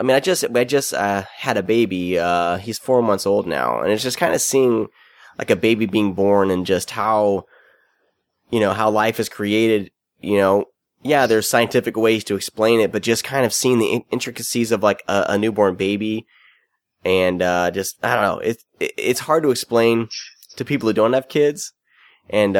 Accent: American